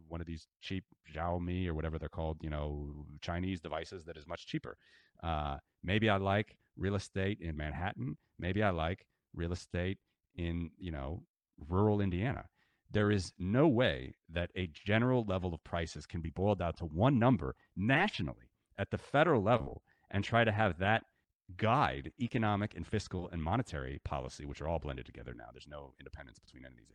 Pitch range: 75-100 Hz